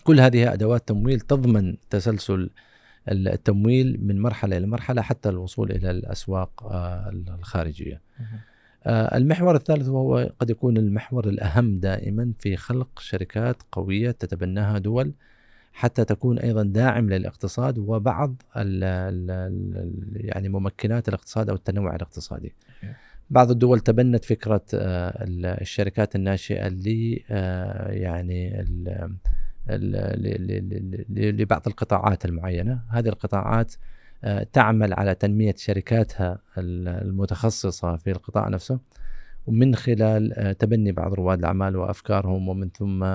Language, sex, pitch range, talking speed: Arabic, male, 95-115 Hz, 100 wpm